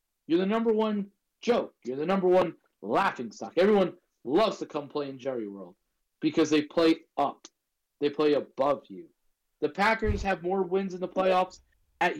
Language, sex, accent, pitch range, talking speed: English, male, American, 155-195 Hz, 175 wpm